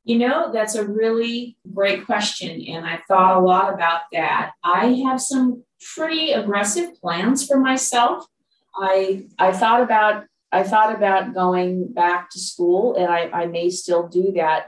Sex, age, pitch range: female, 30-49, 175-215 Hz